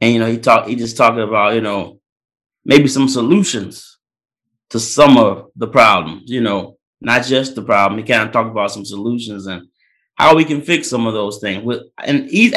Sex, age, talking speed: male, 30-49, 200 wpm